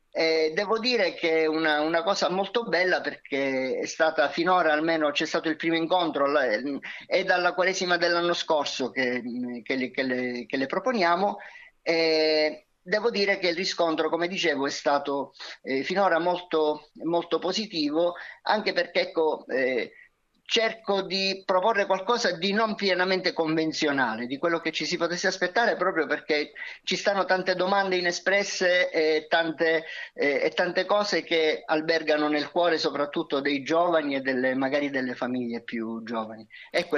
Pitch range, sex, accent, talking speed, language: 145-185 Hz, male, native, 140 wpm, Italian